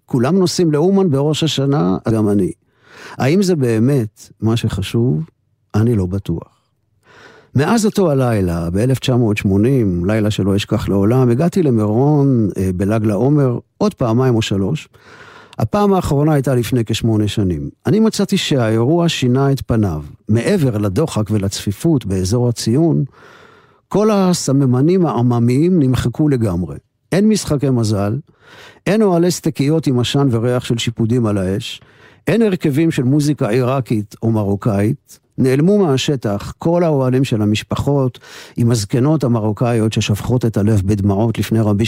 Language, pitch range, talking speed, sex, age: Hebrew, 105-145 Hz, 125 wpm, male, 50-69